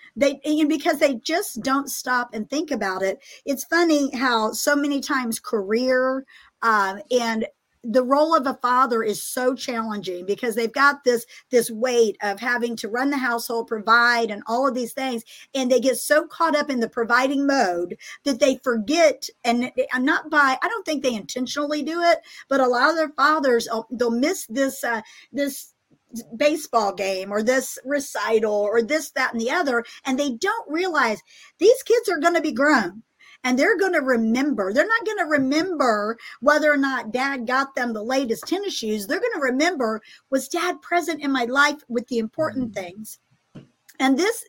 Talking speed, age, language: 185 wpm, 50-69, English